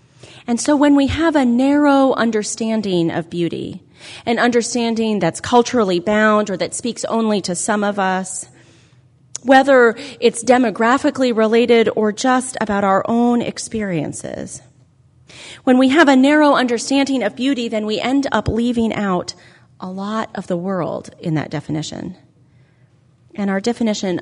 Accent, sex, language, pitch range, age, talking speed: American, female, English, 155-225 Hz, 30-49, 145 wpm